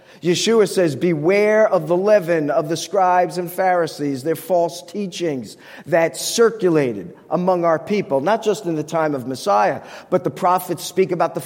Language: English